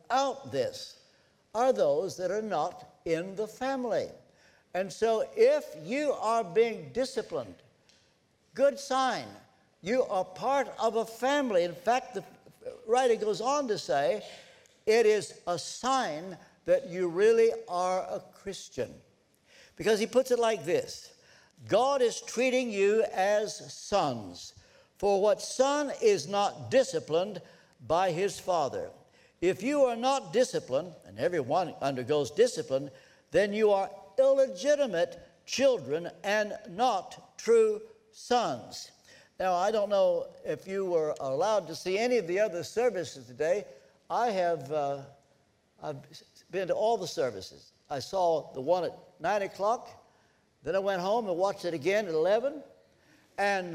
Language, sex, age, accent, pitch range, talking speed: English, male, 60-79, American, 185-270 Hz, 140 wpm